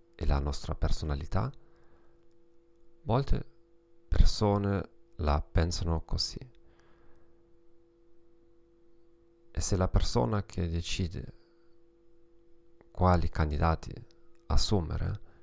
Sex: male